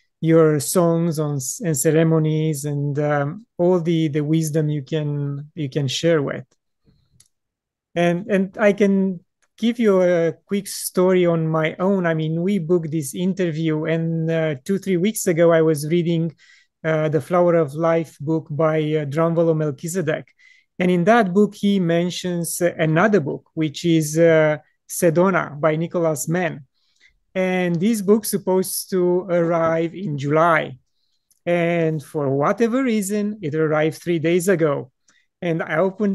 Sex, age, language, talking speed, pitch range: male, 30-49, English, 145 wpm, 160-185 Hz